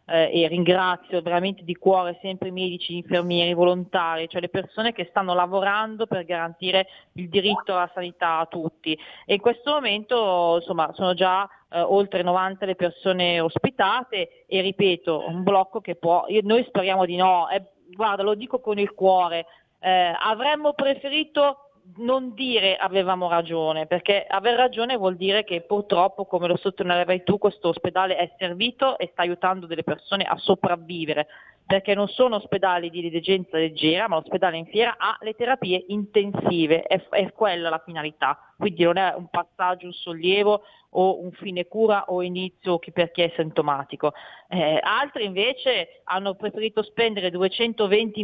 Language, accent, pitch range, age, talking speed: Italian, native, 175-210 Hz, 30-49, 165 wpm